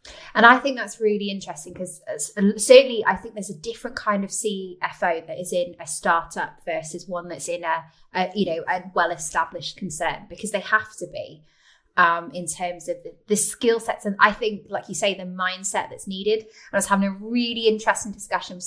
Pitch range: 175-215 Hz